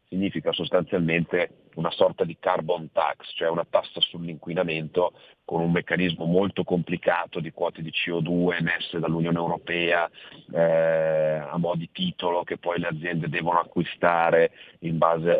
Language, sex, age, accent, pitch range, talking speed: Italian, male, 40-59, native, 80-90 Hz, 140 wpm